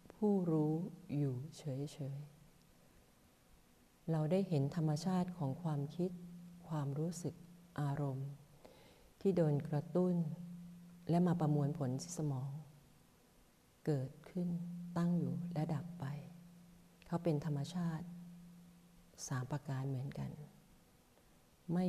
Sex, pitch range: female, 145-175 Hz